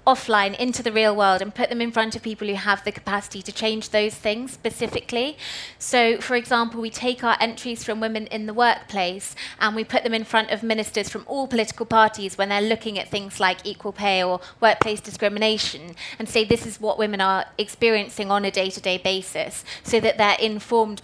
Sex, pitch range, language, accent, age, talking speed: female, 200-230 Hz, English, British, 20-39, 205 wpm